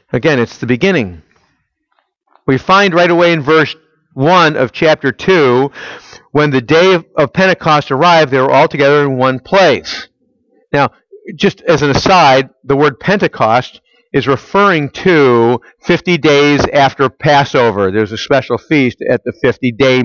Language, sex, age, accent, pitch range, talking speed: English, male, 50-69, American, 130-175 Hz, 150 wpm